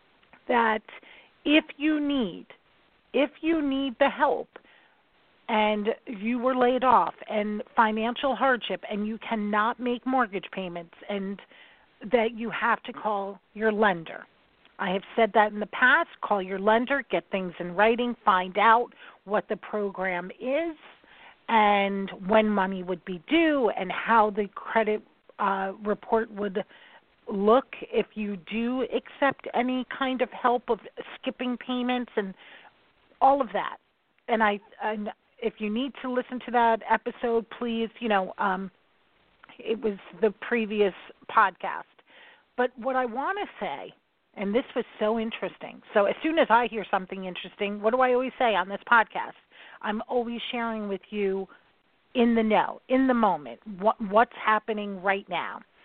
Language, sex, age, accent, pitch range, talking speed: English, female, 40-59, American, 205-250 Hz, 155 wpm